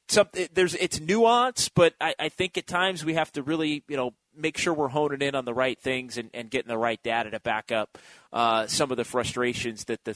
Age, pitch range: 30-49, 120-175 Hz